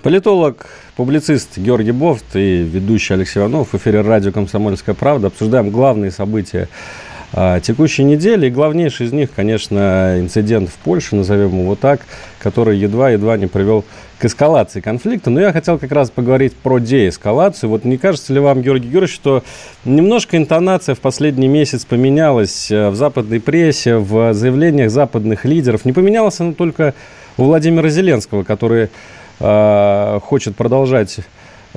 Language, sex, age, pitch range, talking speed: Russian, male, 40-59, 105-140 Hz, 145 wpm